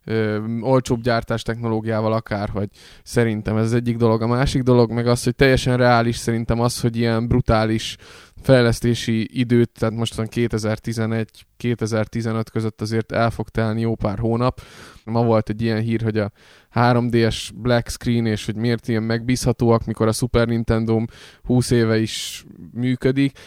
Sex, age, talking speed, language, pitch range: male, 20-39, 150 wpm, Hungarian, 110-125 Hz